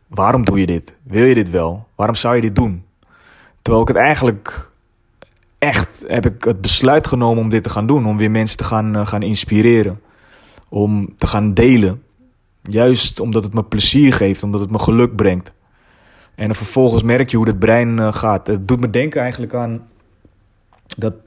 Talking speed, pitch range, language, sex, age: 190 wpm, 105-120 Hz, Dutch, male, 30-49